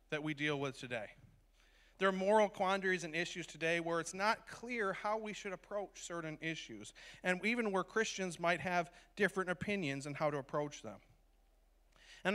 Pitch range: 155-190 Hz